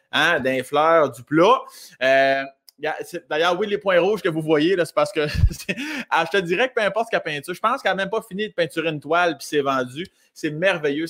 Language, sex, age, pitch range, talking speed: French, male, 30-49, 135-180 Hz, 240 wpm